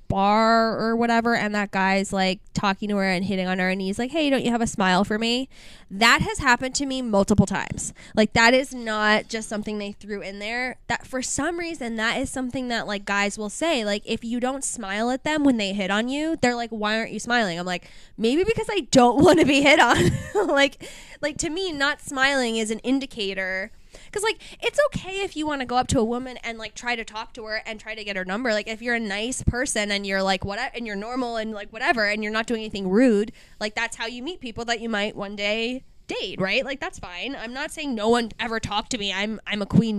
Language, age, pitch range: English, 10-29, 210-265 Hz